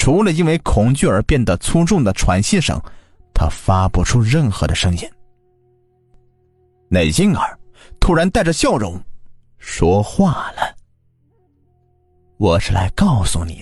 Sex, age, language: male, 30-49, Chinese